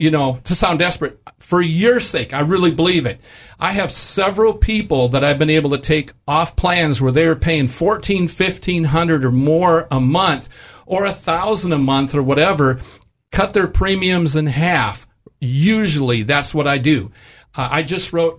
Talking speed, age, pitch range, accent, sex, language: 185 wpm, 50-69, 135-180 Hz, American, male, English